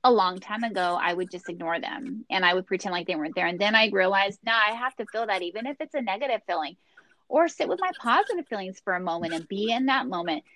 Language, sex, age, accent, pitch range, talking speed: English, female, 30-49, American, 190-235 Hz, 265 wpm